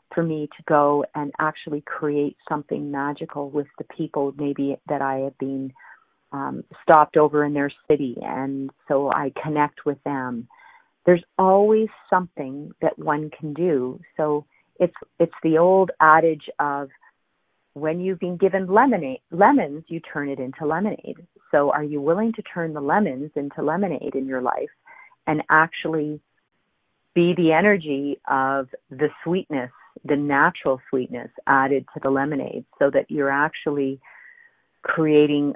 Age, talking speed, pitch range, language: 40-59, 145 wpm, 140-170 Hz, English